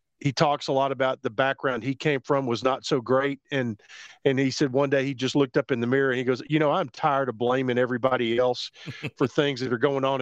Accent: American